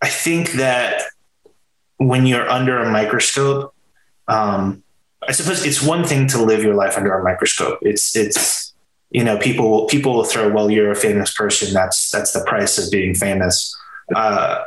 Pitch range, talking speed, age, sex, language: 95-125 Hz, 175 wpm, 20-39, male, English